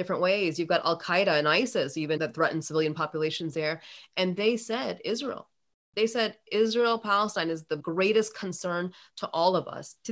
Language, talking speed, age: English, 180 wpm, 30-49